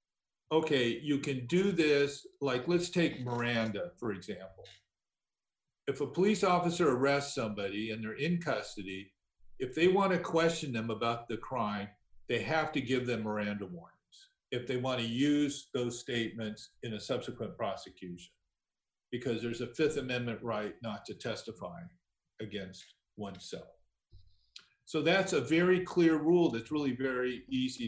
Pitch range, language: 115-160 Hz, English